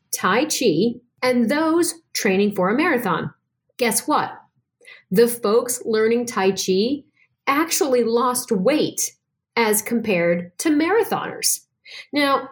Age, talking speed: 40-59, 110 wpm